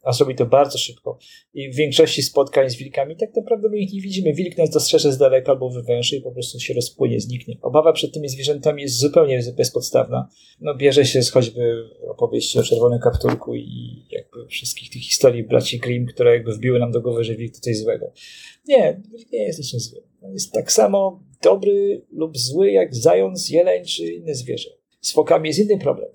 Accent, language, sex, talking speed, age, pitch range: native, Polish, male, 200 wpm, 40-59, 120-195 Hz